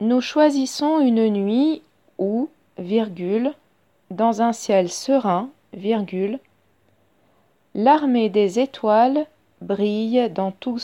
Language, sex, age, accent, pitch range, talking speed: French, female, 40-59, French, 185-250 Hz, 95 wpm